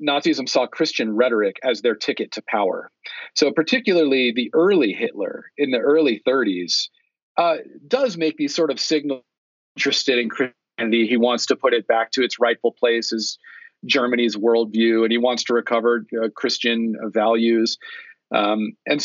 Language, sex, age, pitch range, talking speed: English, male, 40-59, 110-135 Hz, 160 wpm